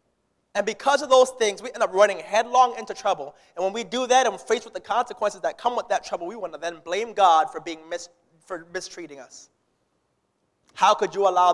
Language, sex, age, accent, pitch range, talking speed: English, male, 20-39, American, 200-265 Hz, 225 wpm